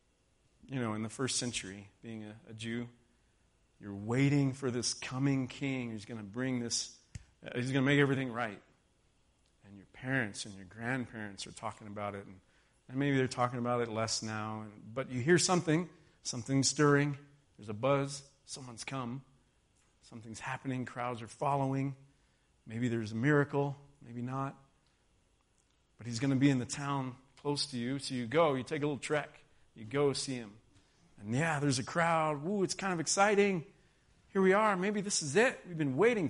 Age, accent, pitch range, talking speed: 40-59, American, 115-145 Hz, 185 wpm